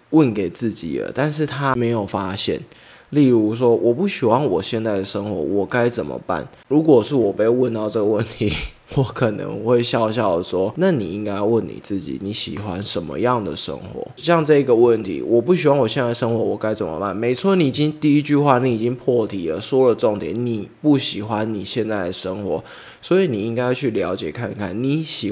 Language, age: Chinese, 20-39